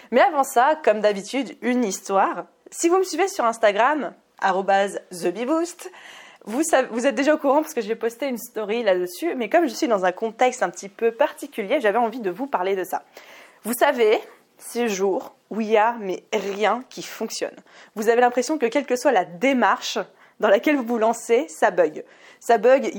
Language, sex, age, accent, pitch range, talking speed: French, female, 20-39, French, 205-280 Hz, 195 wpm